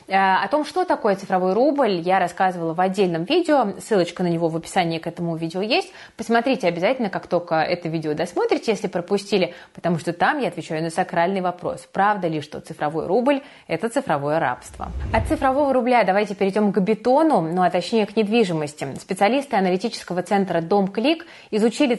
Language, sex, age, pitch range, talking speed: Russian, female, 20-39, 170-230 Hz, 170 wpm